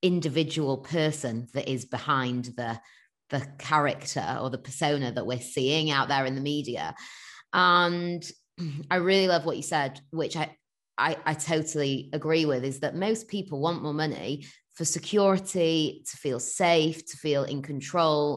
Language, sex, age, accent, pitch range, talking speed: English, female, 20-39, British, 145-175 Hz, 160 wpm